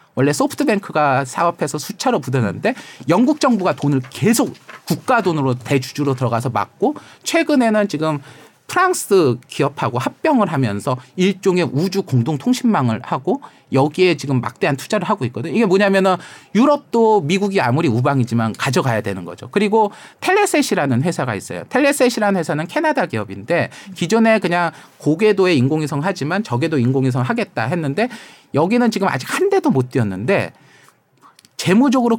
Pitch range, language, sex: 135-225 Hz, Korean, male